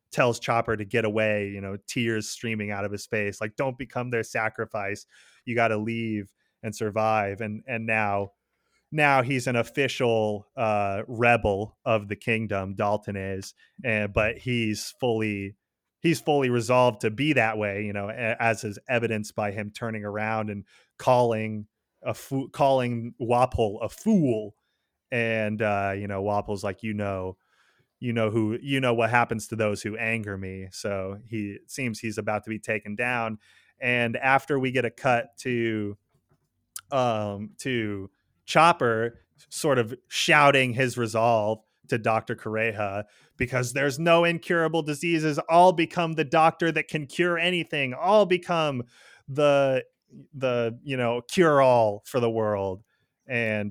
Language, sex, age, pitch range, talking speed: English, male, 30-49, 105-130 Hz, 155 wpm